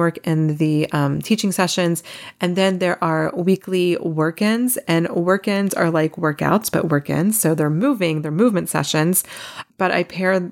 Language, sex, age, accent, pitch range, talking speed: English, female, 30-49, American, 160-185 Hz, 160 wpm